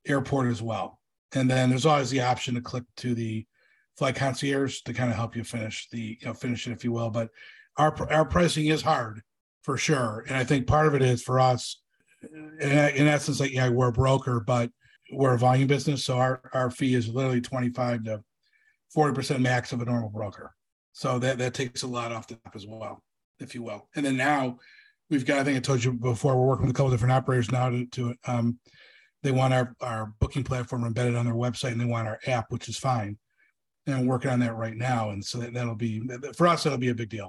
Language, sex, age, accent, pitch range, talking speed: English, male, 40-59, American, 120-140 Hz, 235 wpm